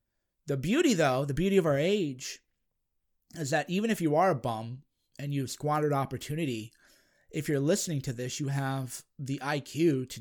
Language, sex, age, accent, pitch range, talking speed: English, male, 30-49, American, 130-155 Hz, 175 wpm